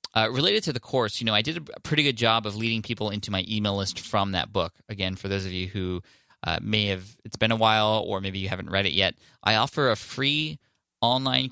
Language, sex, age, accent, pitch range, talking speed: English, male, 20-39, American, 95-120 Hz, 250 wpm